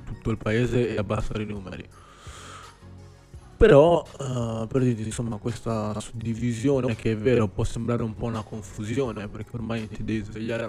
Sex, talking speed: male, 150 wpm